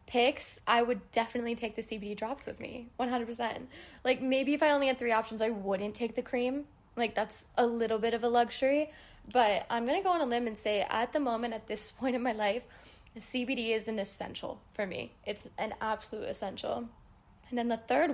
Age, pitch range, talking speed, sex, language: 10-29, 225-275 Hz, 220 wpm, female, English